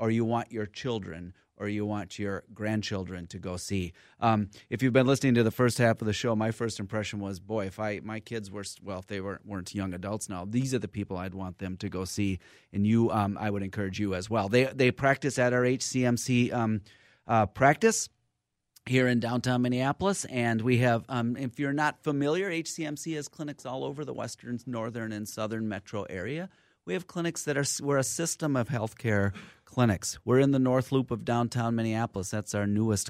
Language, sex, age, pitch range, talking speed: English, male, 30-49, 100-125 Hz, 210 wpm